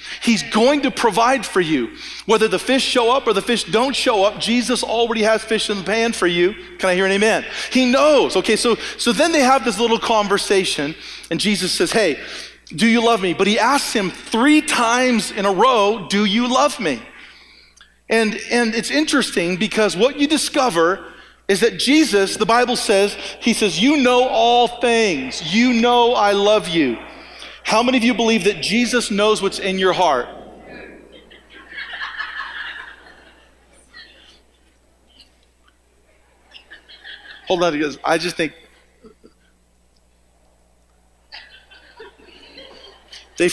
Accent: American